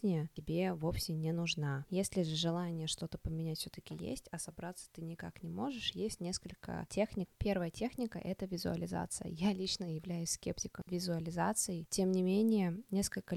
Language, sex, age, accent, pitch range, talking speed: Russian, female, 20-39, native, 160-185 Hz, 155 wpm